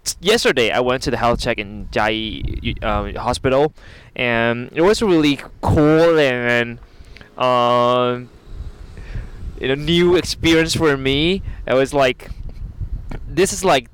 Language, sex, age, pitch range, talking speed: English, male, 20-39, 110-140 Hz, 130 wpm